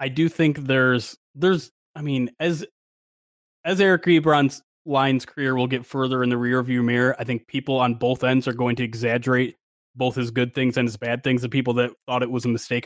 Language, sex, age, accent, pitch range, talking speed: English, male, 20-39, American, 120-140 Hz, 215 wpm